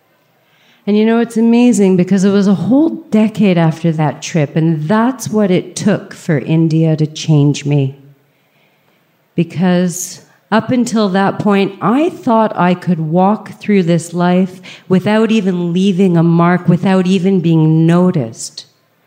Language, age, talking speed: English, 40-59, 145 wpm